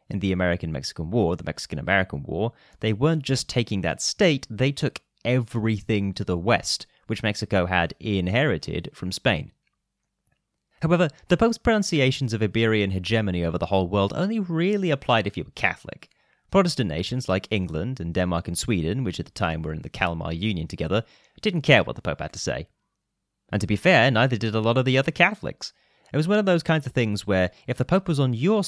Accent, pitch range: British, 95-135 Hz